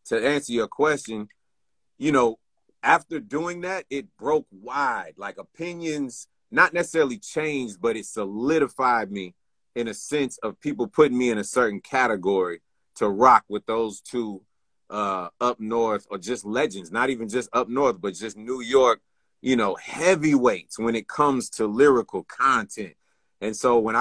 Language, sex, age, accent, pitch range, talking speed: English, male, 30-49, American, 115-150 Hz, 160 wpm